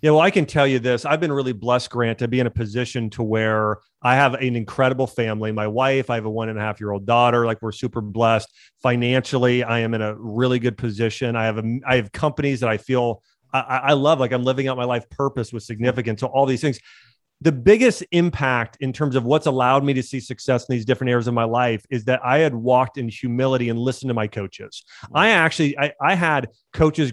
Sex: male